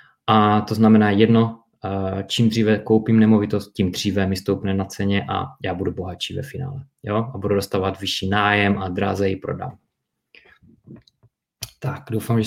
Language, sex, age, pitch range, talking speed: Czech, male, 20-39, 105-120 Hz, 155 wpm